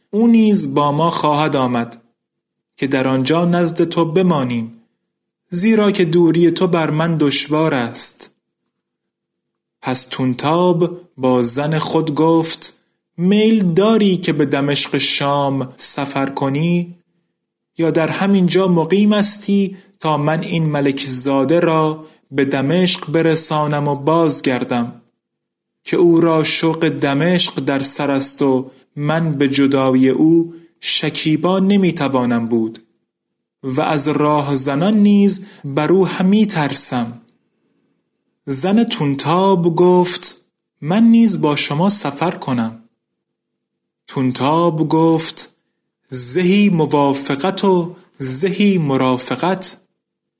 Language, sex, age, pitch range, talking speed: Persian, male, 30-49, 140-180 Hz, 110 wpm